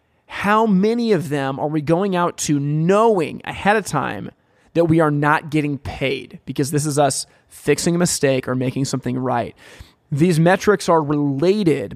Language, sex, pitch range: English, male, 135-165 Hz